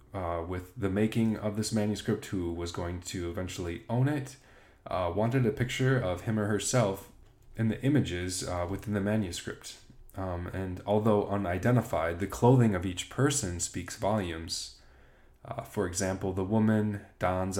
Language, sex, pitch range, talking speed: English, male, 85-110 Hz, 155 wpm